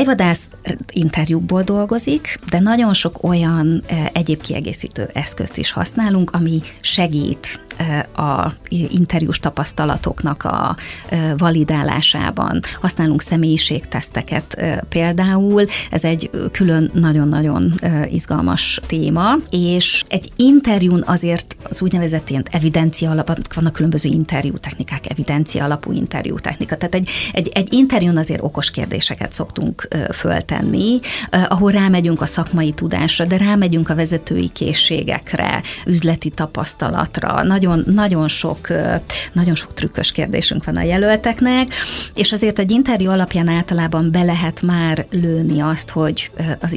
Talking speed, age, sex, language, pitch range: 110 wpm, 30-49, female, Hungarian, 160-185 Hz